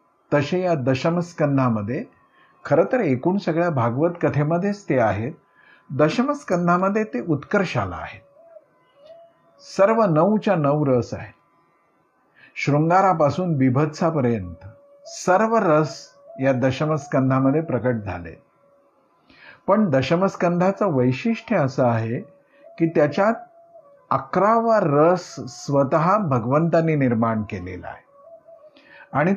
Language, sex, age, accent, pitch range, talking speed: Marathi, male, 50-69, native, 130-190 Hz, 90 wpm